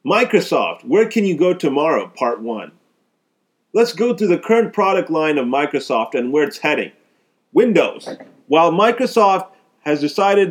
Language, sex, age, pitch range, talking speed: English, male, 30-49, 150-190 Hz, 150 wpm